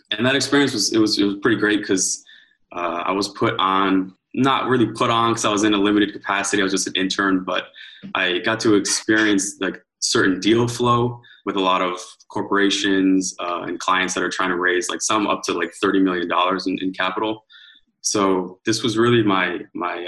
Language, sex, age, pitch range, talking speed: English, male, 20-39, 95-110 Hz, 210 wpm